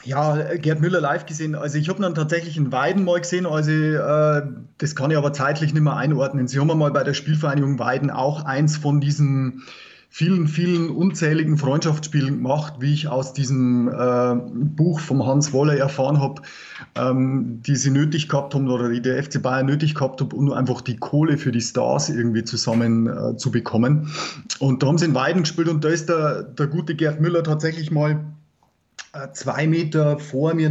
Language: German